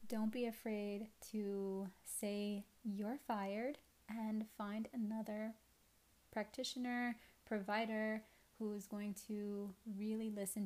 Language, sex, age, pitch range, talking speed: English, female, 20-39, 205-225 Hz, 100 wpm